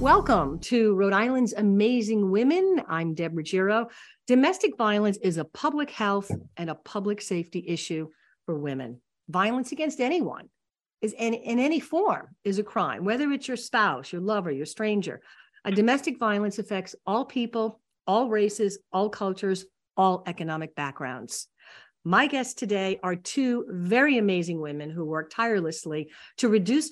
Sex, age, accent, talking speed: female, 50-69, American, 150 wpm